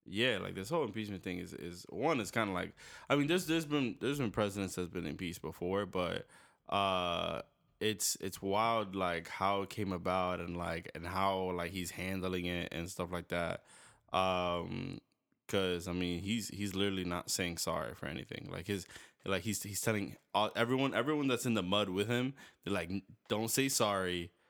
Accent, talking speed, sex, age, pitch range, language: American, 195 wpm, male, 20-39, 90-105 Hz, English